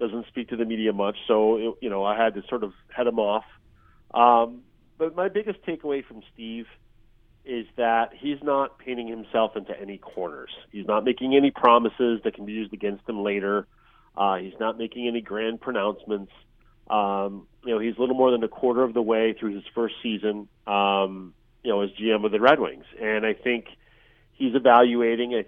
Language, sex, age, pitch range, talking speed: English, male, 40-59, 110-125 Hz, 200 wpm